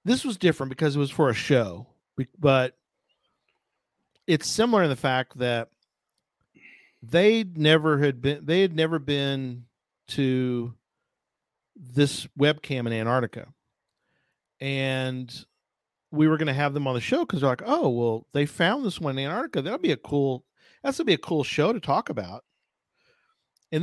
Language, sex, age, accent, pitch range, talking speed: English, male, 40-59, American, 135-210 Hz, 165 wpm